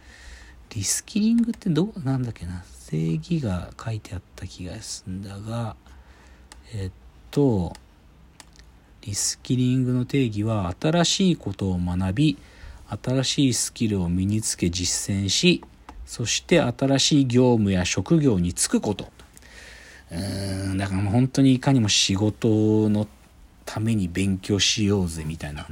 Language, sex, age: Japanese, male, 50-69